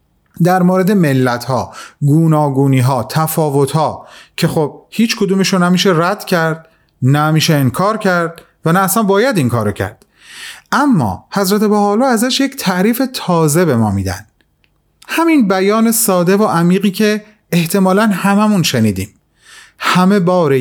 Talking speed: 120 wpm